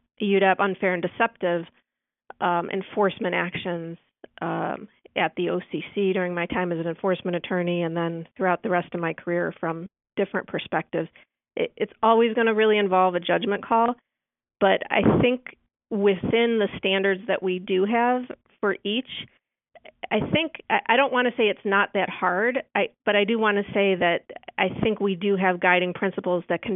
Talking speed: 180 wpm